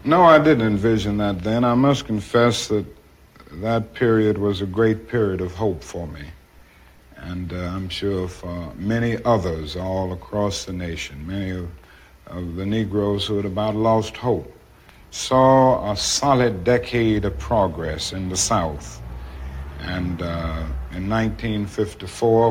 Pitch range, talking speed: 90-115 Hz, 145 wpm